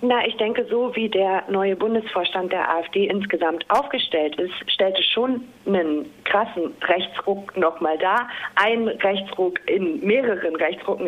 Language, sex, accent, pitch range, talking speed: German, female, German, 195-235 Hz, 135 wpm